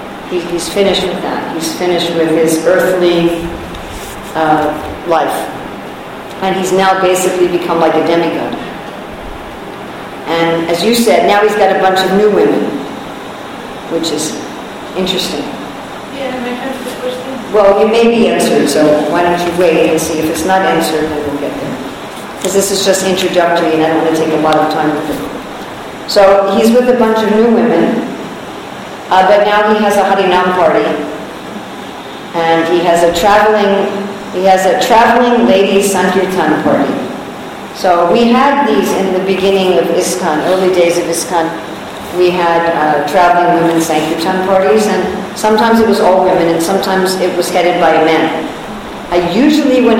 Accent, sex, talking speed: American, female, 170 wpm